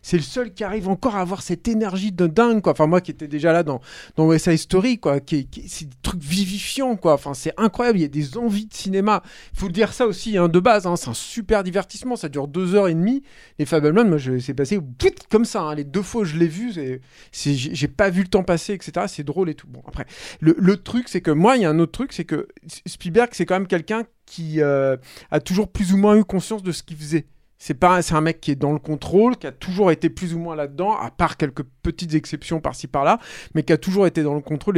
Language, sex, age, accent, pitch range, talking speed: French, male, 40-59, French, 155-205 Hz, 270 wpm